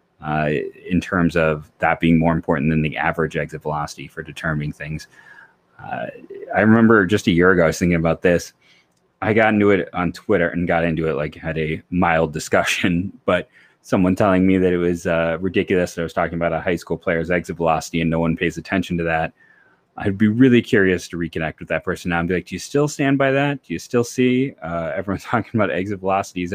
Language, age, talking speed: English, 30-49, 225 wpm